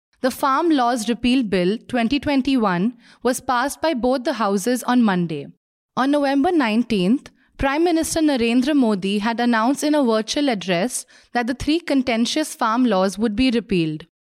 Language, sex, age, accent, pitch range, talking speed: English, female, 20-39, Indian, 220-280 Hz, 150 wpm